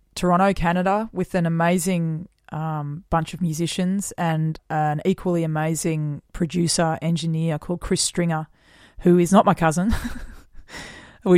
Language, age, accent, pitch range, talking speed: English, 20-39, Australian, 165-185 Hz, 125 wpm